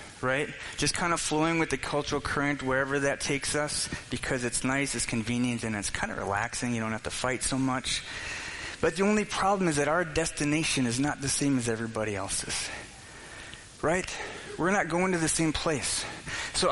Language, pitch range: English, 125-165 Hz